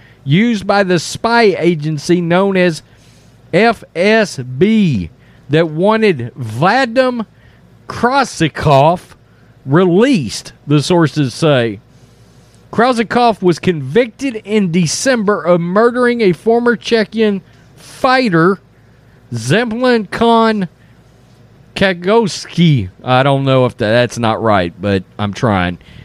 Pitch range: 135-225 Hz